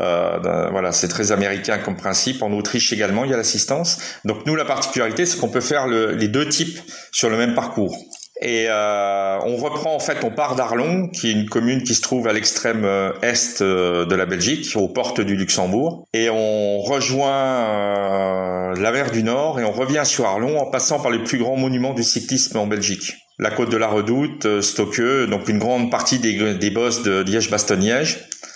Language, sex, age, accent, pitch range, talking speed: French, male, 40-59, French, 105-135 Hz, 205 wpm